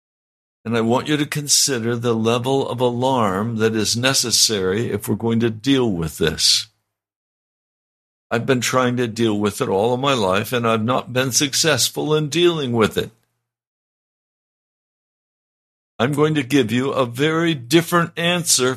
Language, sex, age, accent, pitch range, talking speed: English, male, 60-79, American, 105-135 Hz, 155 wpm